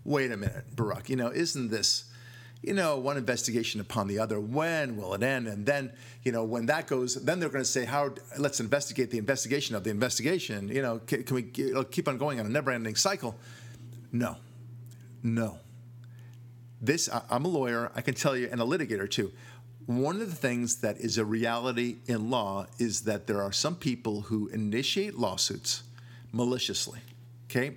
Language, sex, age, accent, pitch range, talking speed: English, male, 50-69, American, 115-135 Hz, 190 wpm